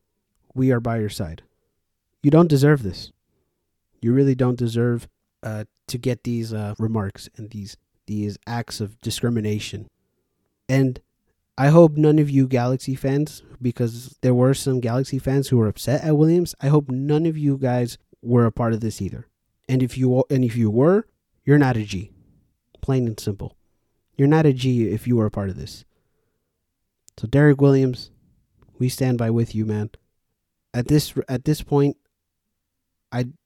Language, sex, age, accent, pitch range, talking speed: English, male, 30-49, American, 110-135 Hz, 170 wpm